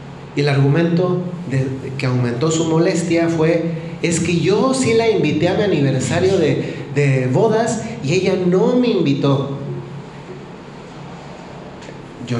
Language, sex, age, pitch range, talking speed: Spanish, male, 30-49, 135-165 Hz, 125 wpm